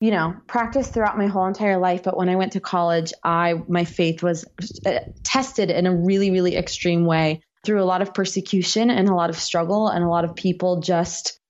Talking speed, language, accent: 215 wpm, English, American